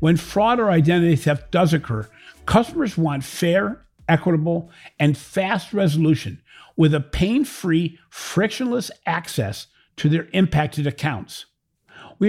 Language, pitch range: English, 130-185 Hz